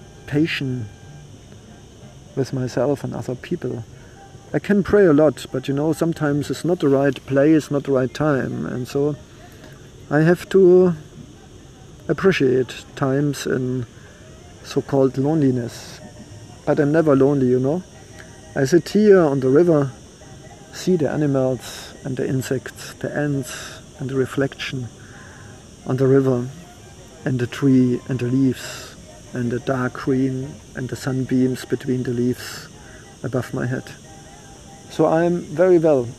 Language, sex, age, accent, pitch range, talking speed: English, male, 50-69, German, 125-145 Hz, 135 wpm